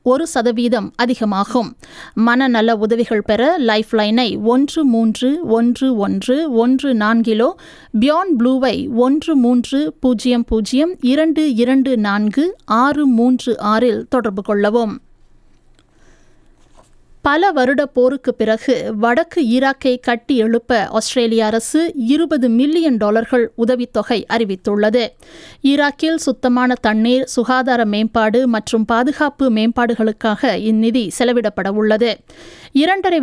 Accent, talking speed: native, 85 wpm